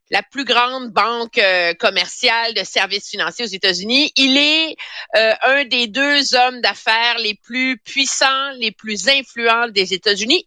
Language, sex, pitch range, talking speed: French, female, 215-320 Hz, 155 wpm